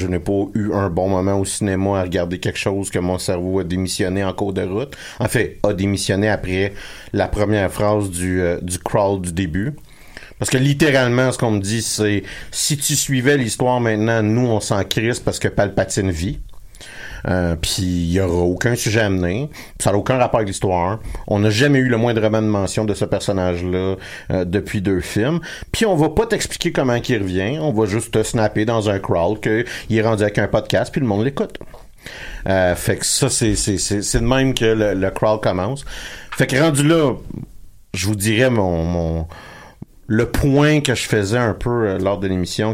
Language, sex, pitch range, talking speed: French, male, 95-120 Hz, 205 wpm